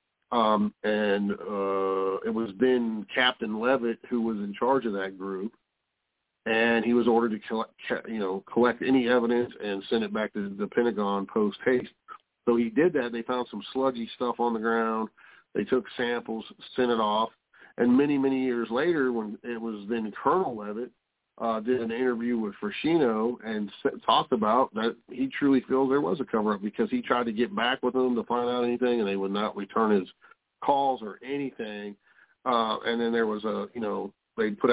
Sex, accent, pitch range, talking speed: male, American, 105-125 Hz, 190 wpm